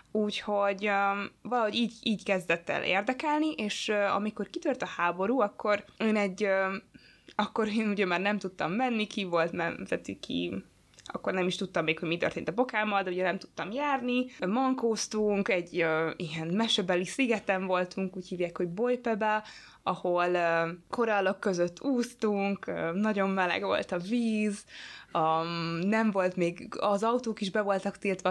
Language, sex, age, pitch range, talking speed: Hungarian, female, 20-39, 180-220 Hz, 160 wpm